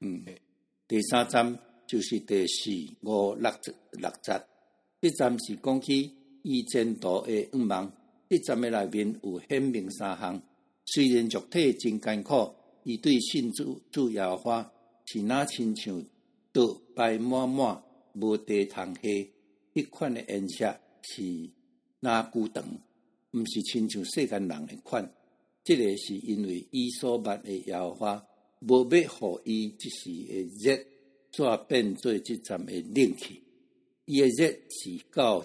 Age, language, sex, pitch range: 60-79, Chinese, male, 105-125 Hz